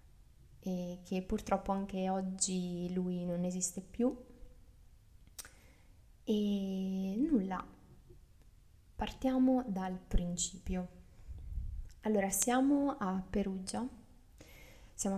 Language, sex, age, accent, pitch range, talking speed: Italian, female, 20-39, native, 185-220 Hz, 70 wpm